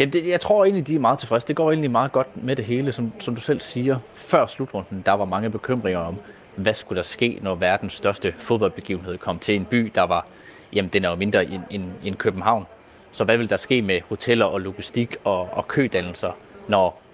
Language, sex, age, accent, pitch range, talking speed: Danish, male, 30-49, native, 100-125 Hz, 210 wpm